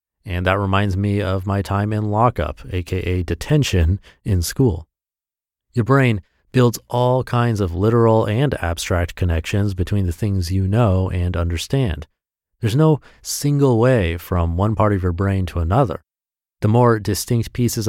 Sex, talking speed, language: male, 155 wpm, English